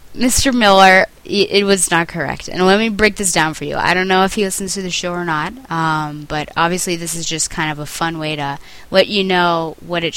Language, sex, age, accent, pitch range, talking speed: English, female, 20-39, American, 155-200 Hz, 250 wpm